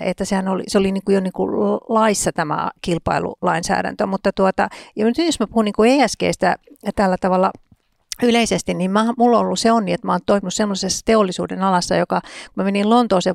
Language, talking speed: Finnish, 200 wpm